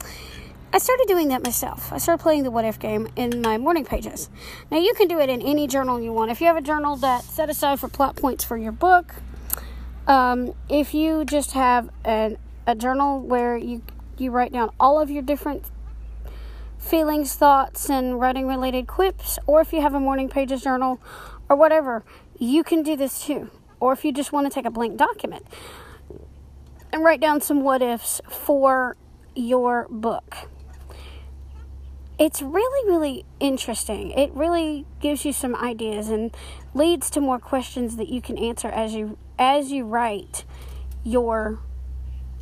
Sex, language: female, English